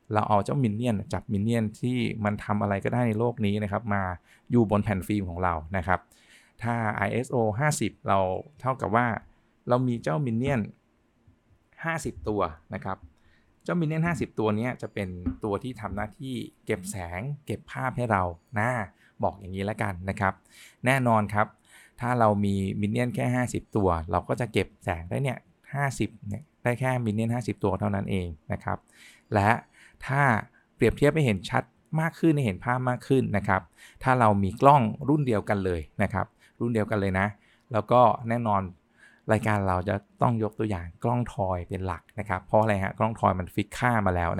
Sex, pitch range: male, 95-120 Hz